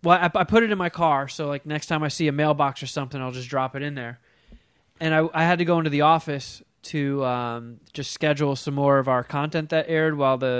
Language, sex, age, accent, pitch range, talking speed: English, male, 20-39, American, 145-185 Hz, 255 wpm